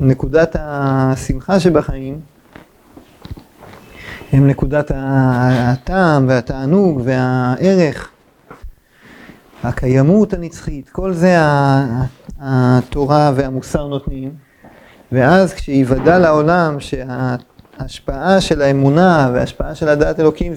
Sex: male